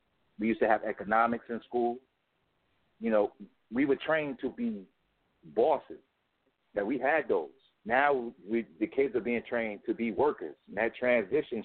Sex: male